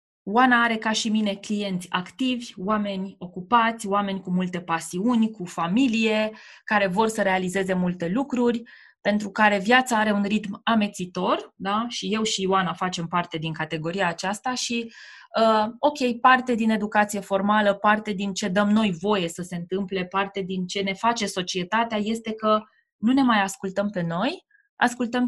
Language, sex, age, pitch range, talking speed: Romanian, female, 20-39, 185-230 Hz, 165 wpm